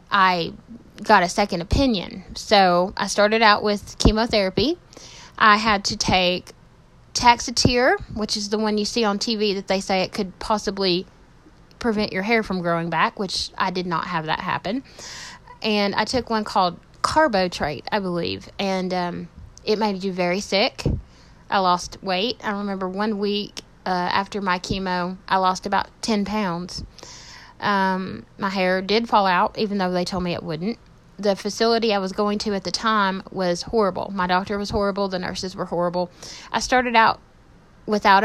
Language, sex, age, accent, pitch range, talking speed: English, female, 20-39, American, 180-215 Hz, 175 wpm